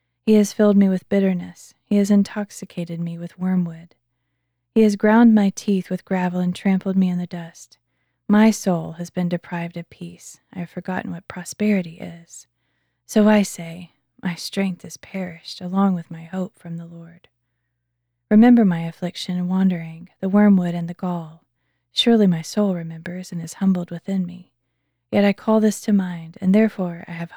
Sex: female